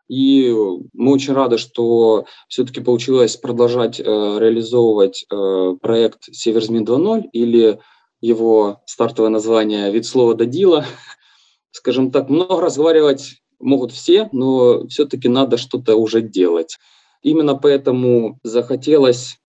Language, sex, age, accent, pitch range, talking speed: Ukrainian, male, 20-39, native, 110-140 Hz, 115 wpm